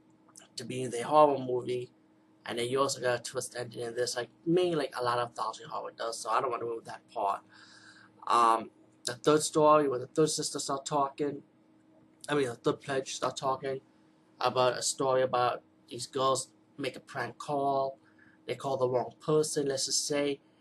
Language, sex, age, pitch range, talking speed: English, male, 20-39, 125-145 Hz, 200 wpm